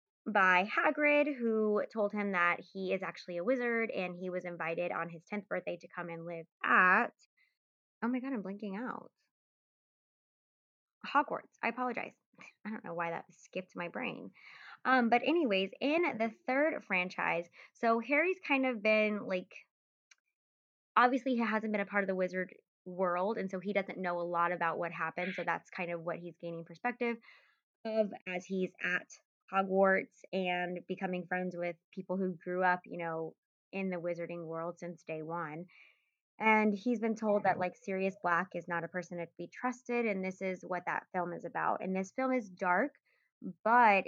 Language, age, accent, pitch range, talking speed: English, 20-39, American, 175-220 Hz, 180 wpm